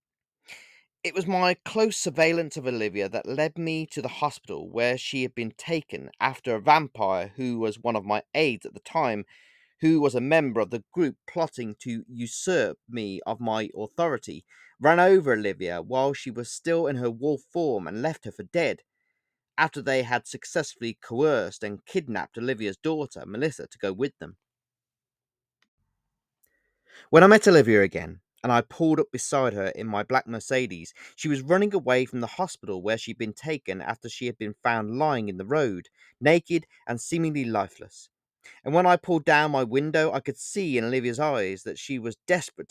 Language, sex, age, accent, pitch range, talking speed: English, male, 30-49, British, 115-160 Hz, 185 wpm